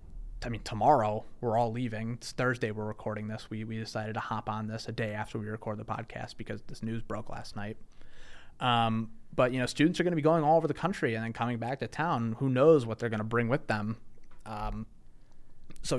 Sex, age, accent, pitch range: male, 30-49, American, 115-145 Hz